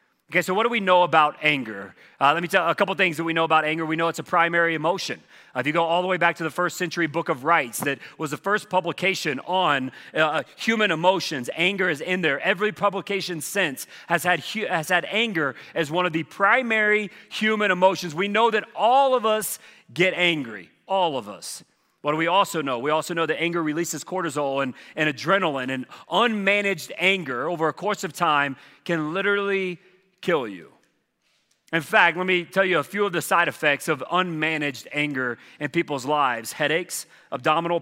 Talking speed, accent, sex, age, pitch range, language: 205 wpm, American, male, 40-59, 155-190 Hz, English